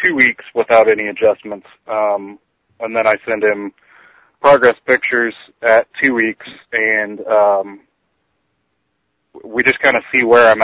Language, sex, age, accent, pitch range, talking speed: English, male, 30-49, American, 105-125 Hz, 140 wpm